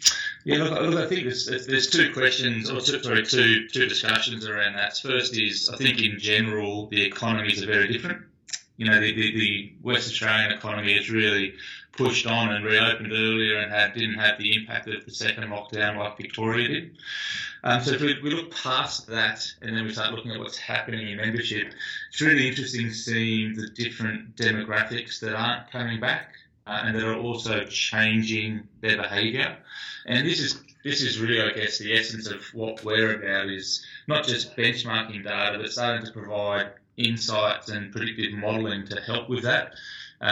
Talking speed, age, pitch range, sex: 180 wpm, 20-39, 105-120 Hz, male